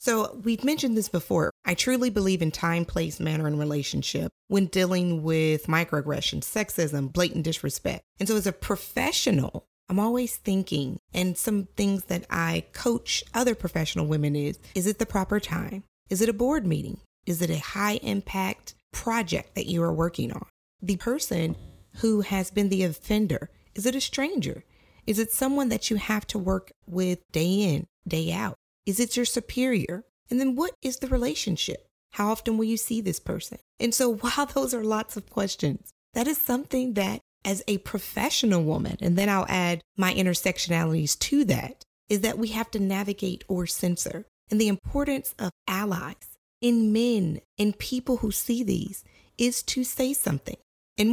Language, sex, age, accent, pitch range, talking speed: English, female, 30-49, American, 175-235 Hz, 175 wpm